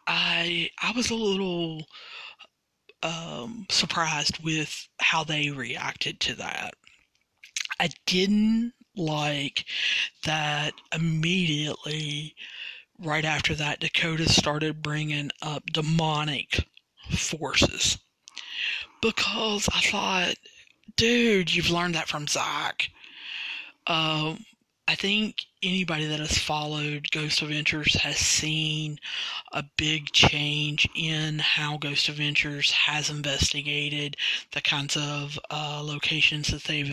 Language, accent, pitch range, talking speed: English, American, 145-160 Hz, 100 wpm